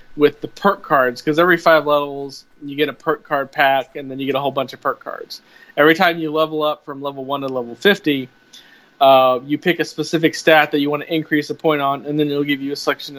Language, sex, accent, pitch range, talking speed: English, male, American, 130-155 Hz, 255 wpm